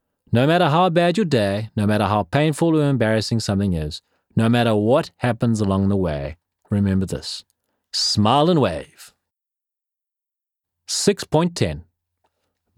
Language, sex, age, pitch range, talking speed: English, male, 40-59, 100-150 Hz, 125 wpm